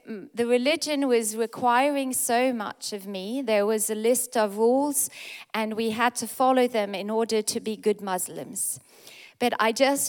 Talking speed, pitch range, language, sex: 175 wpm, 210-245 Hz, English, female